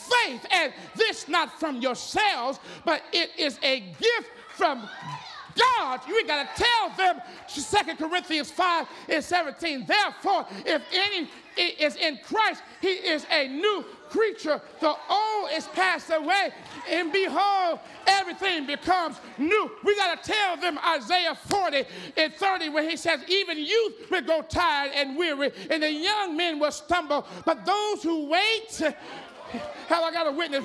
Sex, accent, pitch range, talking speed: male, American, 295-365 Hz, 155 wpm